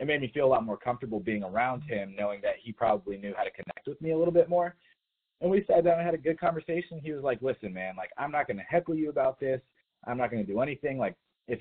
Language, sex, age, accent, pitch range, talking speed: English, male, 30-49, American, 110-160 Hz, 290 wpm